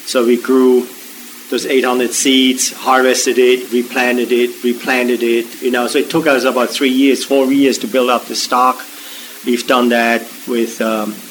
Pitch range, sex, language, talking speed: 120-135 Hz, male, English, 175 wpm